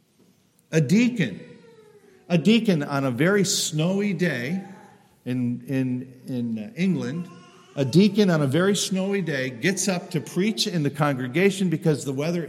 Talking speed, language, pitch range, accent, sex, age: 145 wpm, English, 125-185 Hz, American, male, 50-69